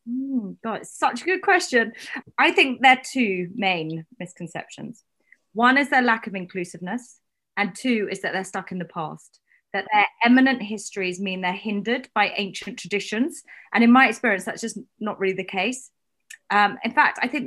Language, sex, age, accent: English, female, 30-49, British